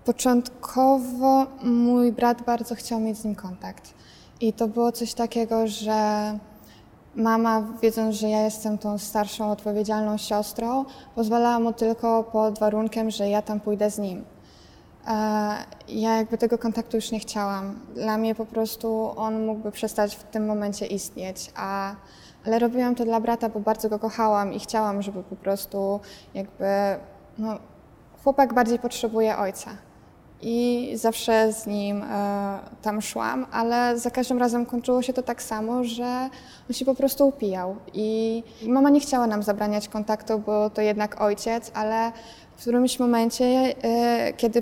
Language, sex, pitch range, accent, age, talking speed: Polish, female, 215-245 Hz, native, 20-39, 145 wpm